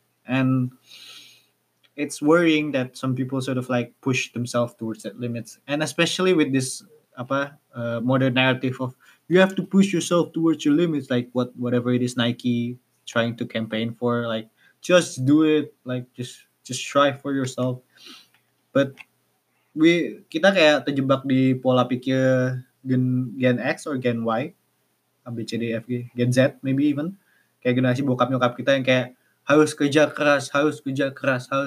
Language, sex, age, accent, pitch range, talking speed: Indonesian, male, 20-39, native, 120-140 Hz, 150 wpm